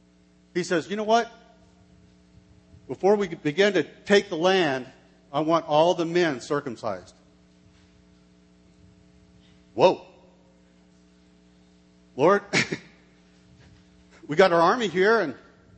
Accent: American